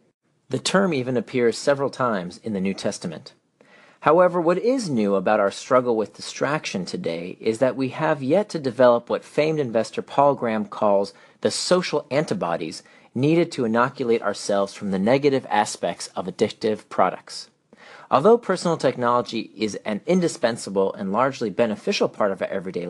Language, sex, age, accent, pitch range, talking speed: English, male, 40-59, American, 115-165 Hz, 155 wpm